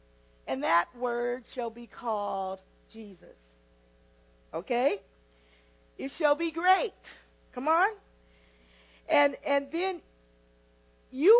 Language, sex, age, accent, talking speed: English, female, 40-59, American, 95 wpm